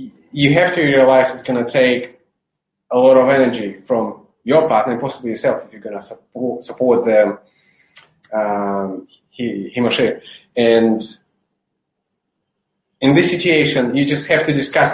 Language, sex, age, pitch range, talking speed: English, male, 20-39, 115-140 Hz, 150 wpm